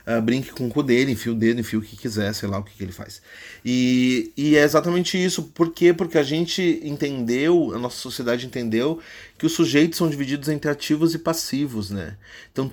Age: 30-49